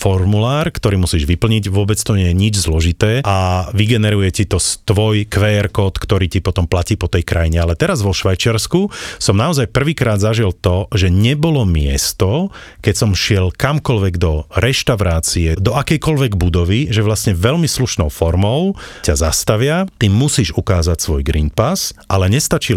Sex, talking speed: male, 160 wpm